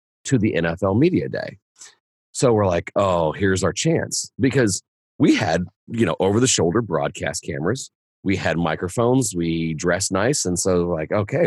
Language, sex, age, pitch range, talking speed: English, male, 30-49, 90-125 Hz, 160 wpm